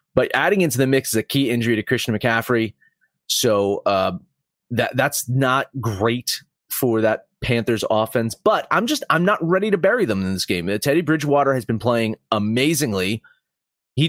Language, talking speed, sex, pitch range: English, 175 wpm, male, 110-145 Hz